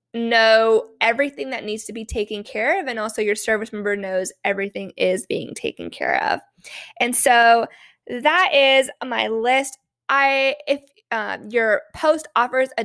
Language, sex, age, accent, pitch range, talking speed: English, female, 10-29, American, 215-260 Hz, 160 wpm